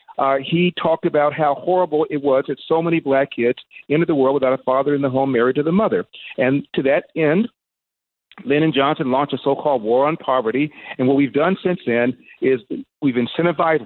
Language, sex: English, male